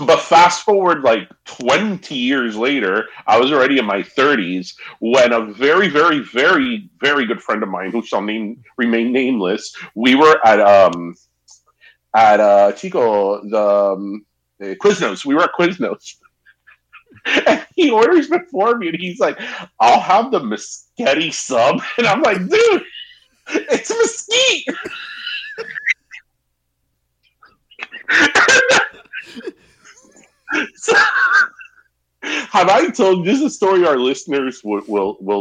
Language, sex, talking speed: English, male, 125 wpm